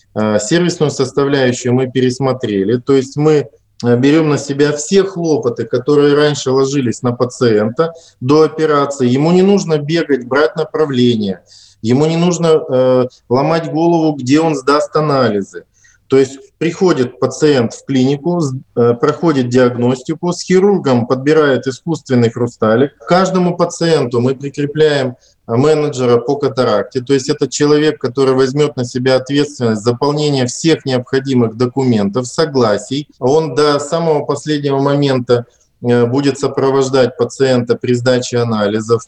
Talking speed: 125 wpm